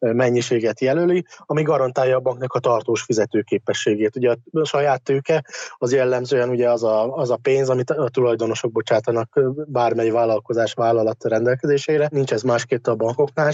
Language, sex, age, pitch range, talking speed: Hungarian, male, 20-39, 115-135 Hz, 150 wpm